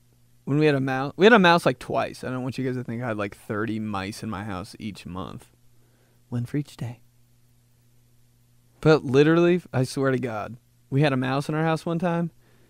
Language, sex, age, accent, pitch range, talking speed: English, male, 20-39, American, 120-150 Hz, 220 wpm